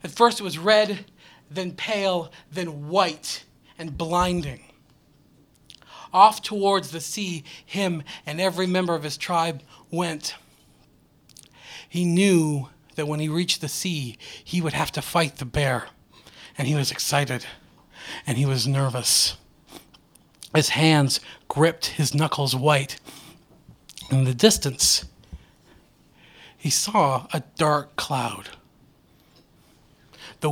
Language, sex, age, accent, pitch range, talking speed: English, male, 40-59, American, 130-165 Hz, 120 wpm